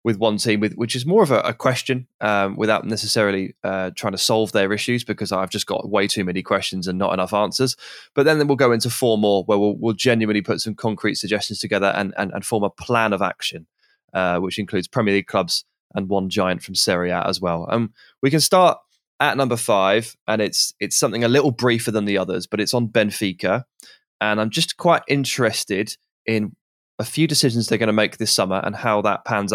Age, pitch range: 20-39, 100-130 Hz